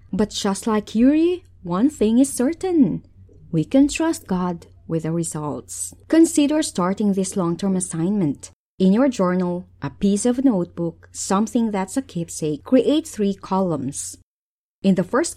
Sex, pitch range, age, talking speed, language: female, 165-245 Hz, 20-39, 145 wpm, English